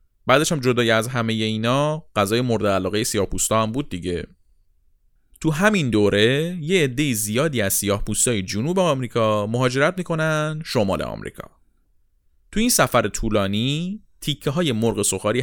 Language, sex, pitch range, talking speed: Persian, male, 100-145 Hz, 135 wpm